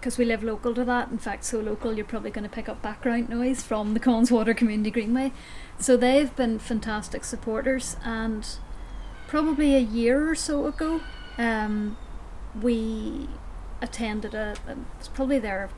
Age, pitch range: 30-49, 220-250 Hz